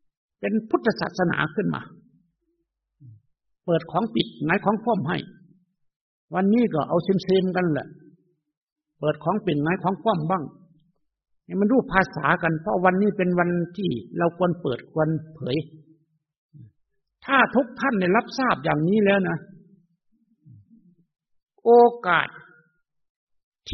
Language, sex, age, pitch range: Thai, male, 60-79, 155-225 Hz